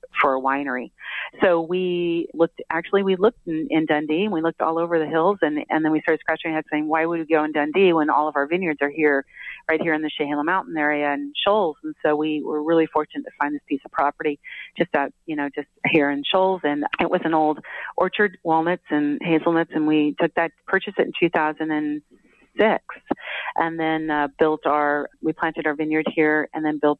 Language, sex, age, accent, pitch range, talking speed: English, female, 40-59, American, 150-165 Hz, 220 wpm